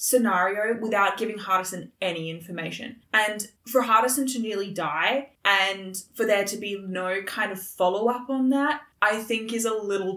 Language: English